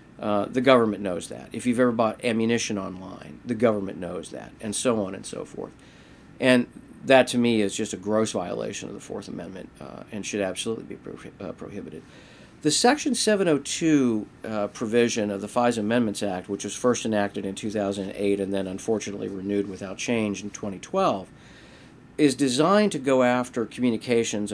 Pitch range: 100-130 Hz